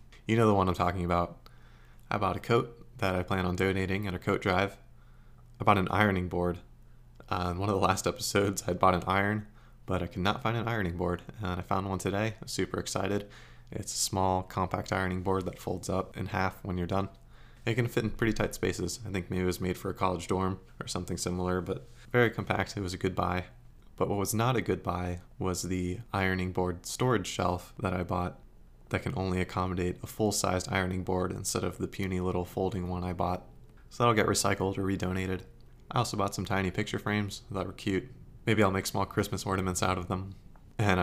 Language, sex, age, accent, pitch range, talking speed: English, male, 20-39, American, 90-105 Hz, 225 wpm